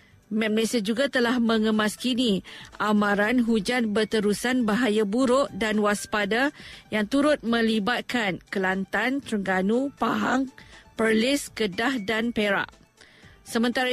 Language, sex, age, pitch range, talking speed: Malay, female, 50-69, 210-245 Hz, 95 wpm